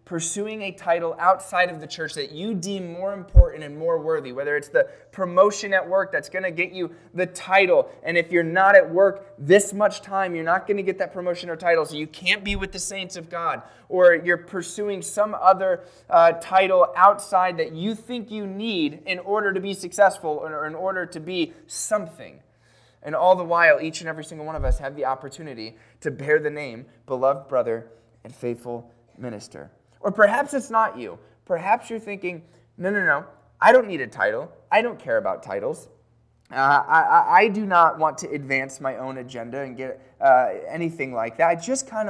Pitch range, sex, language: 135-195 Hz, male, English